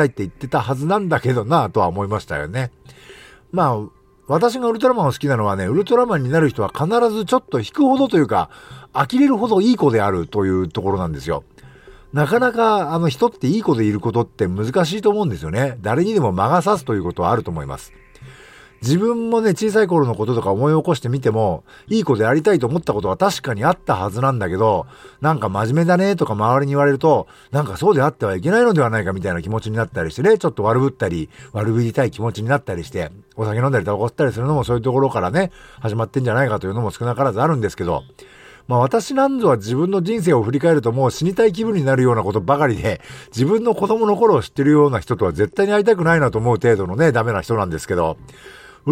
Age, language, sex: 50-69, Japanese, male